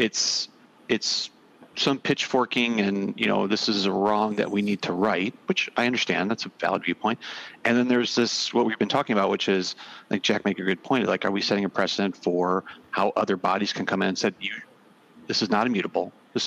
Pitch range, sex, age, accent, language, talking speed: 95-115 Hz, male, 40-59, American, English, 220 wpm